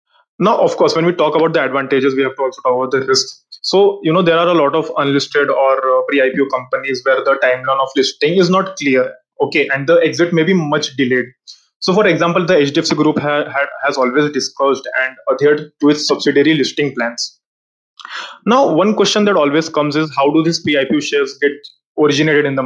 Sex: male